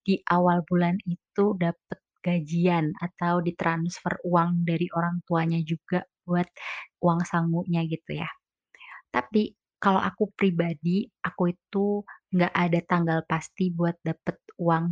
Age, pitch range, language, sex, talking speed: 20-39, 170-195 Hz, Indonesian, female, 125 wpm